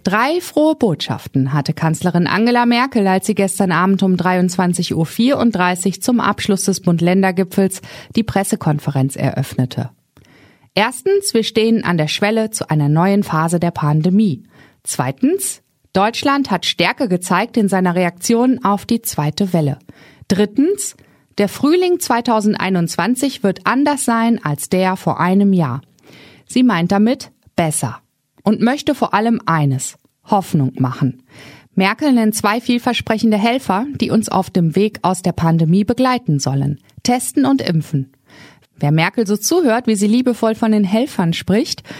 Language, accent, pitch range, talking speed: German, German, 165-230 Hz, 140 wpm